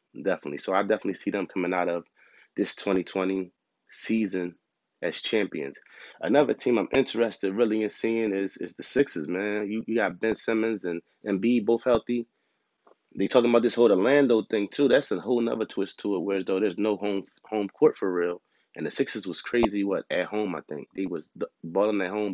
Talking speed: 200 wpm